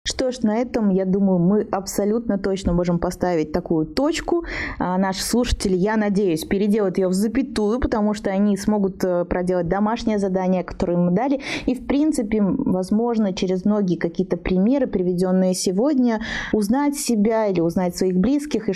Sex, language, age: female, Russian, 20-39